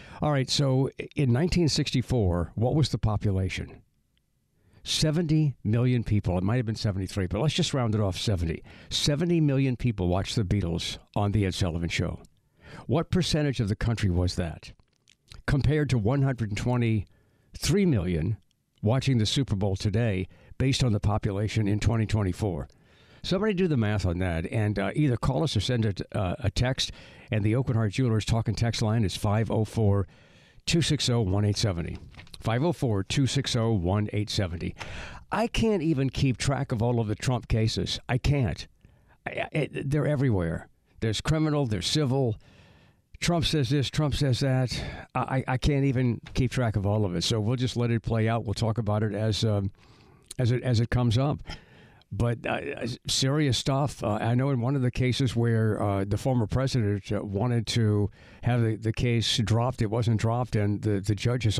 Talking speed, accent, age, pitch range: 170 wpm, American, 60-79, 105-130 Hz